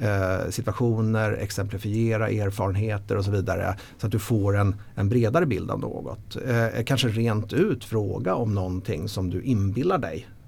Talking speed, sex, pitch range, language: 150 wpm, male, 95-120 Hz, Swedish